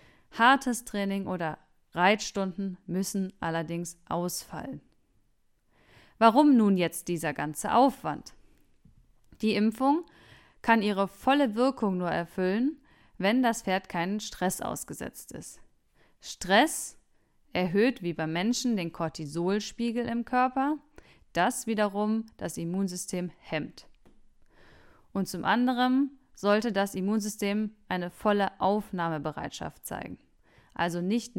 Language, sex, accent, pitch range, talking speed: German, female, German, 180-230 Hz, 105 wpm